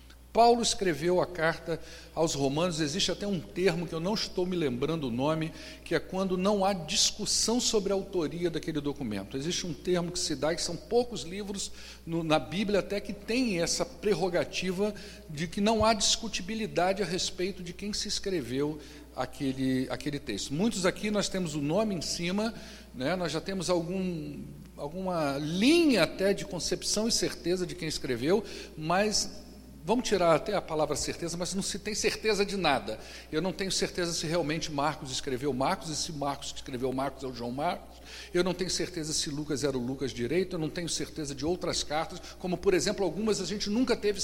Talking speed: 190 wpm